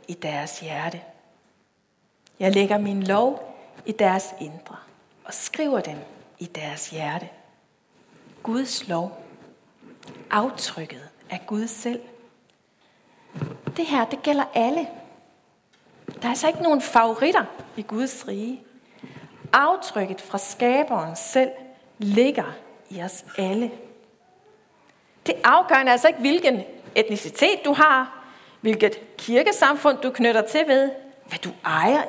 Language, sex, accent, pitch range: English, female, Danish, 200-260 Hz